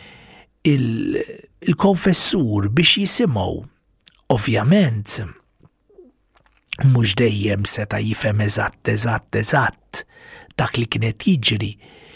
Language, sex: English, male